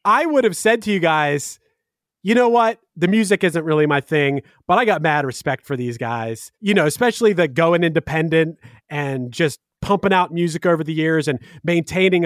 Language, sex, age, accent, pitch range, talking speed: English, male, 30-49, American, 150-215 Hz, 195 wpm